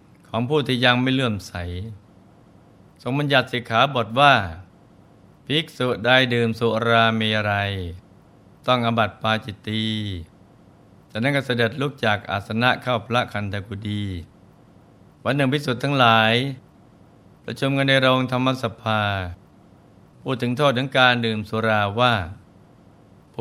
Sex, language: male, Thai